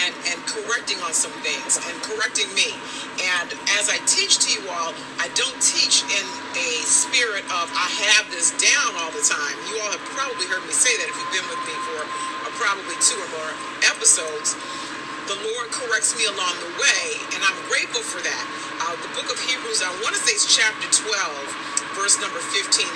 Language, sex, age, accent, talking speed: English, female, 40-59, American, 195 wpm